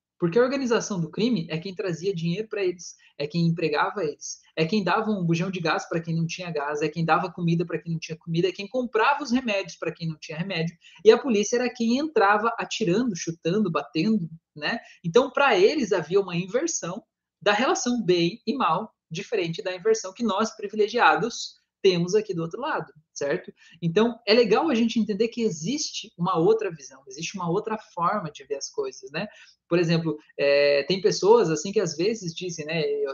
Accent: Brazilian